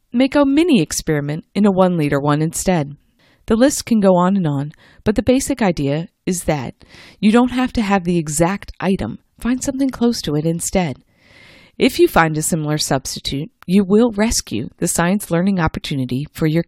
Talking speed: 185 wpm